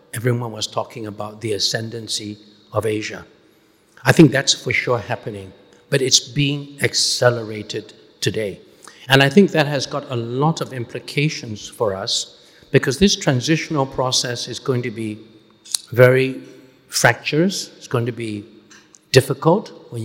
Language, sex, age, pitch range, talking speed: English, male, 60-79, 110-140 Hz, 140 wpm